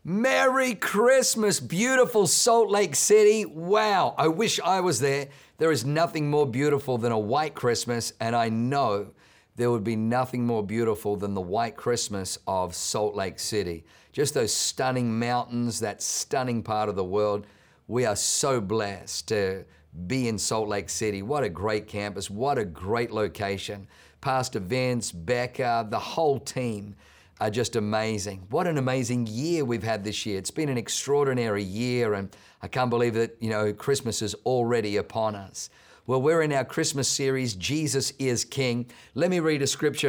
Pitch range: 105-145 Hz